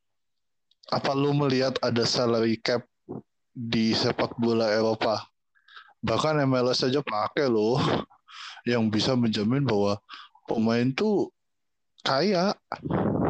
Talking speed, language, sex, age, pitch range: 100 wpm, Indonesian, male, 20-39, 110-135 Hz